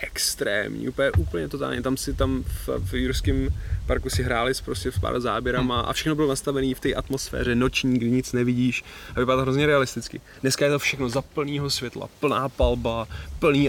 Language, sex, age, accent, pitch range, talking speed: Czech, male, 20-39, native, 105-125 Hz, 185 wpm